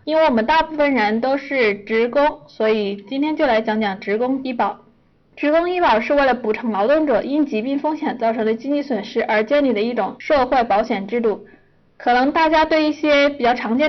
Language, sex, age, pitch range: Chinese, female, 20-39, 220-280 Hz